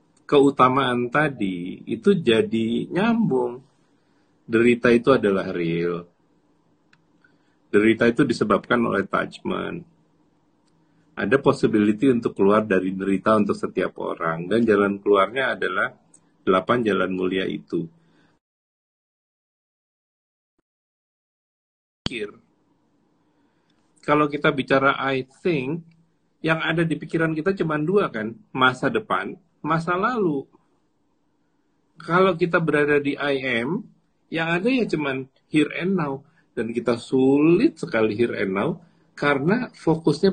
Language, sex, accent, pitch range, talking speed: Indonesian, male, native, 110-160 Hz, 105 wpm